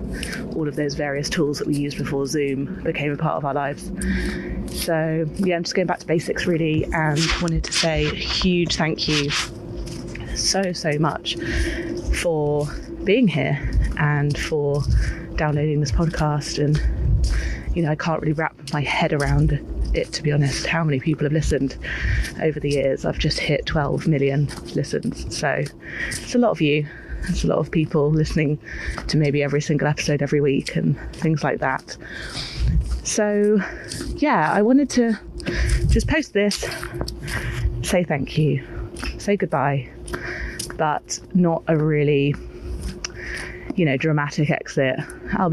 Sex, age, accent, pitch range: female, 20-39, British, 145-165 Hz